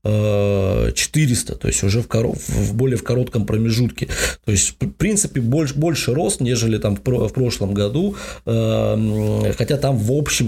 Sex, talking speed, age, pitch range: male, 150 wpm, 20-39, 105-130 Hz